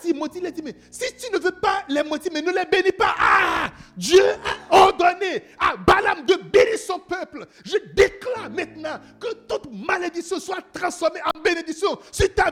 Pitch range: 230-380 Hz